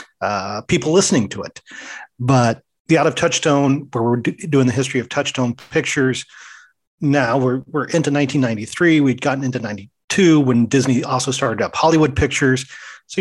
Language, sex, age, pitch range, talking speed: English, male, 40-59, 120-145 Hz, 160 wpm